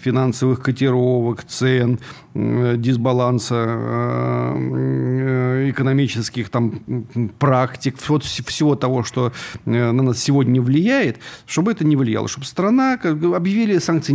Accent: native